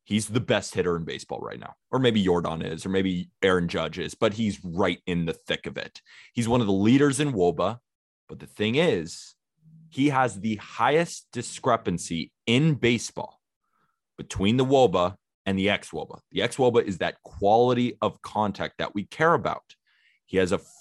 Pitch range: 90-125 Hz